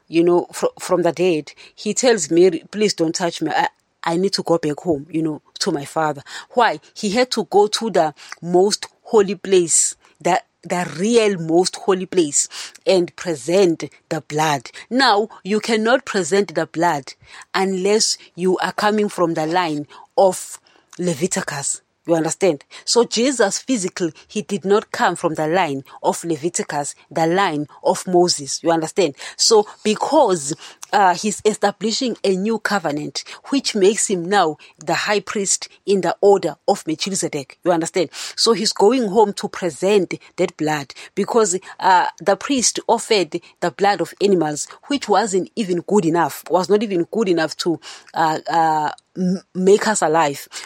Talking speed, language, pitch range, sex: 160 wpm, English, 165-210 Hz, female